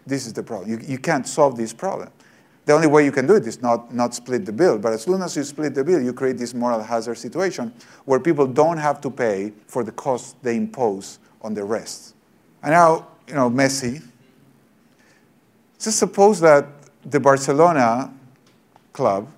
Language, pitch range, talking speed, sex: English, 120-175 Hz, 190 wpm, male